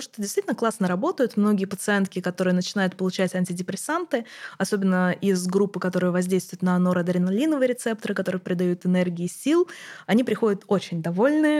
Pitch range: 185-225 Hz